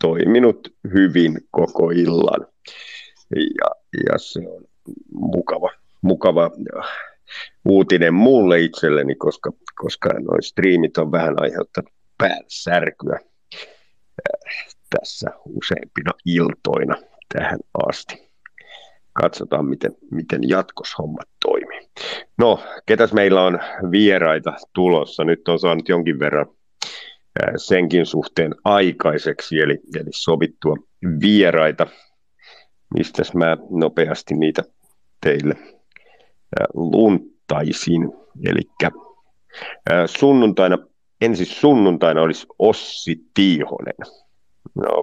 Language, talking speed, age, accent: Finnish, 85 wpm, 50-69, native